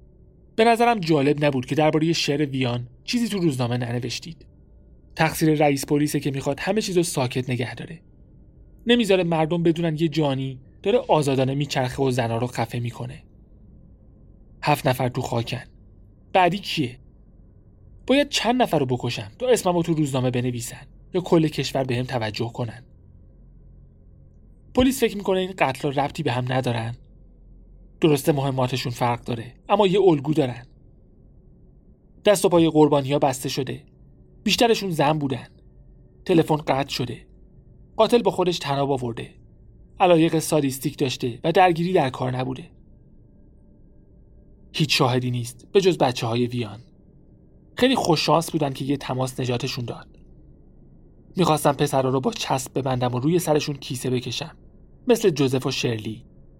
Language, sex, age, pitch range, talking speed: Persian, male, 30-49, 125-165 Hz, 140 wpm